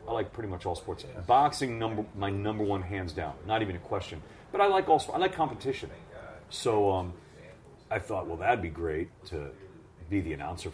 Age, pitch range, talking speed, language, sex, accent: 40-59, 85-110 Hz, 200 wpm, English, male, American